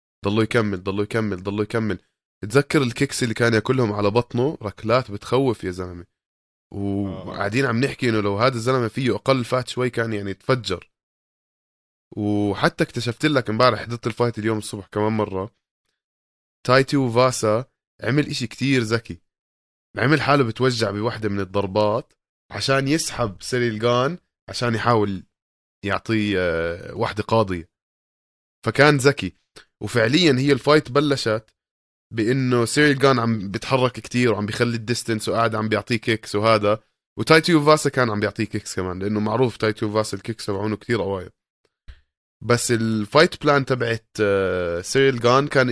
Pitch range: 100-125 Hz